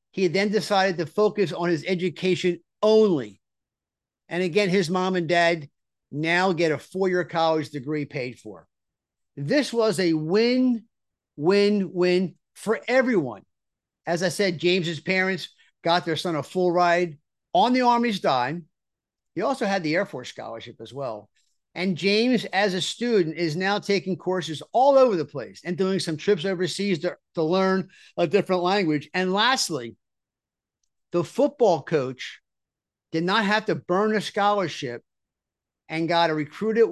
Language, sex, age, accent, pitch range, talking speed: English, male, 50-69, American, 160-210 Hz, 155 wpm